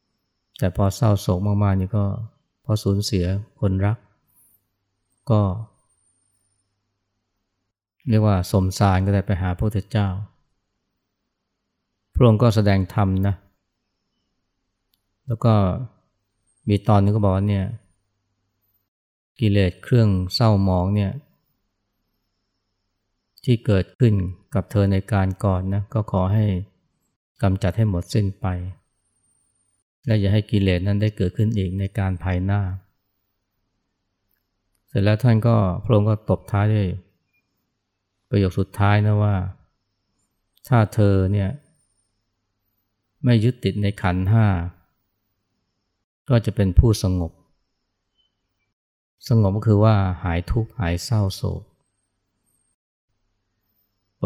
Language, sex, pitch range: Thai, male, 95-105 Hz